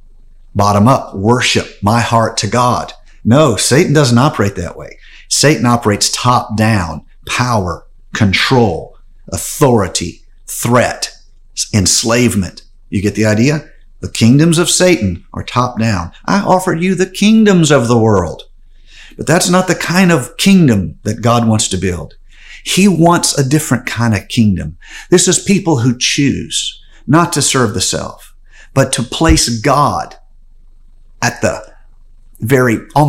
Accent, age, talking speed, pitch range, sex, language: American, 50-69, 140 wpm, 110-150 Hz, male, English